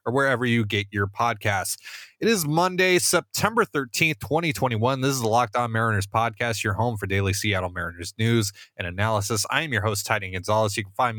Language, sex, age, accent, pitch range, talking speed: English, male, 20-39, American, 100-125 Hz, 200 wpm